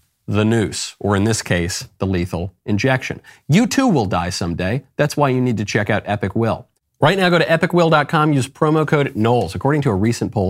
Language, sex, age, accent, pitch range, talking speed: English, male, 40-59, American, 95-125 Hz, 210 wpm